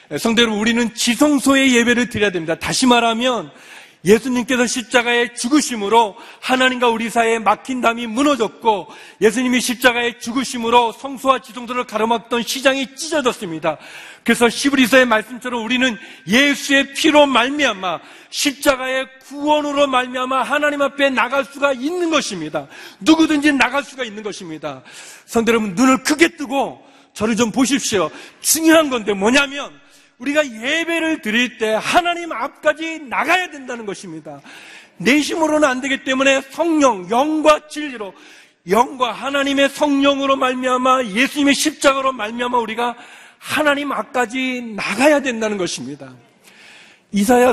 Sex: male